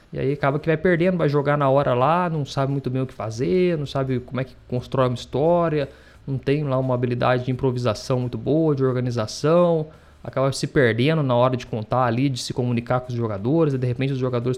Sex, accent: male, Brazilian